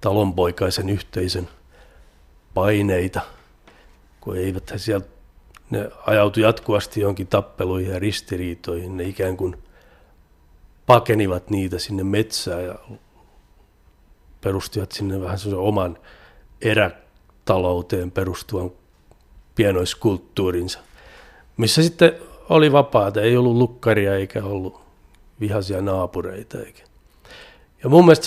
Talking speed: 90 wpm